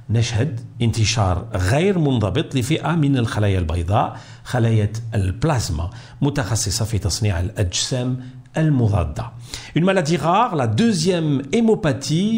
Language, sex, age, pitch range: French, male, 50-69, 110-145 Hz